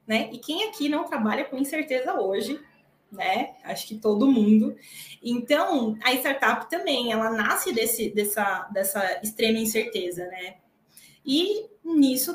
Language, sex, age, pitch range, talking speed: Portuguese, female, 20-39, 215-285 Hz, 130 wpm